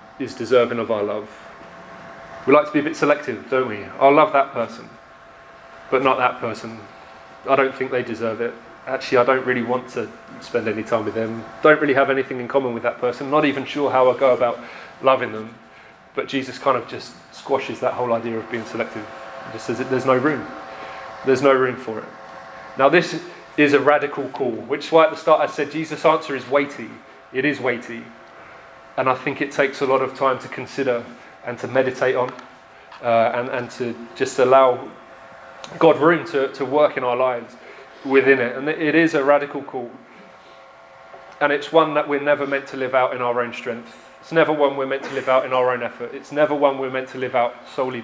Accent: British